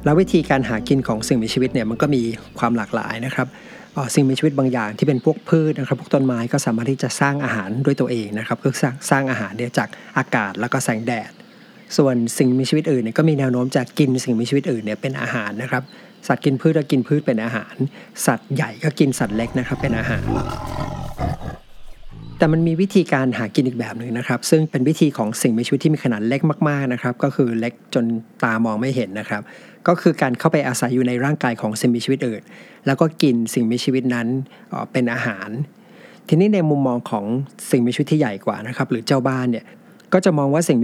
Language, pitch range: Thai, 120-150 Hz